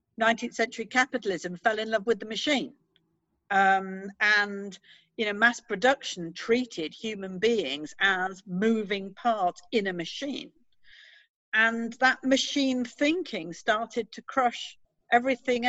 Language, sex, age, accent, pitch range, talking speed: English, female, 50-69, British, 205-260 Hz, 120 wpm